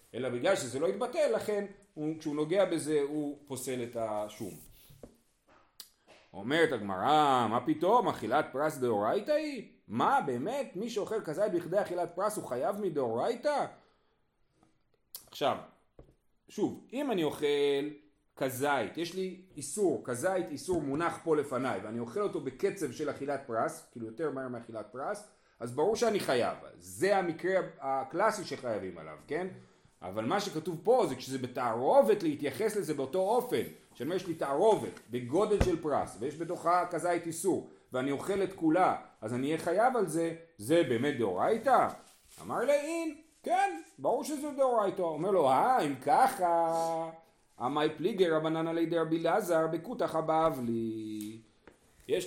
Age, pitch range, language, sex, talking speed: 30-49, 135-200 Hz, Hebrew, male, 140 wpm